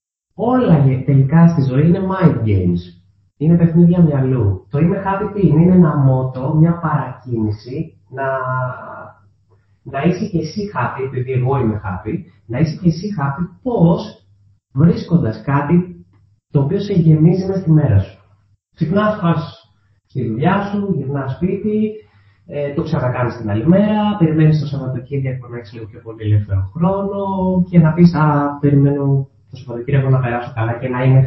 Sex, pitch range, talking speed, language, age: male, 110-170 Hz, 160 wpm, Greek, 30-49